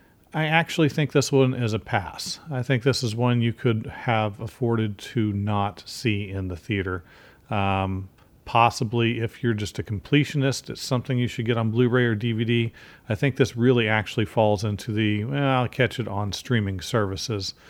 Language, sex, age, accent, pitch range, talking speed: English, male, 40-59, American, 100-120 Hz, 185 wpm